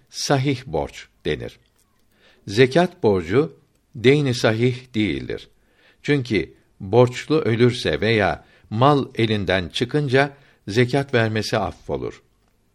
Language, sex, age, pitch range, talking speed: Turkish, male, 60-79, 100-135 Hz, 85 wpm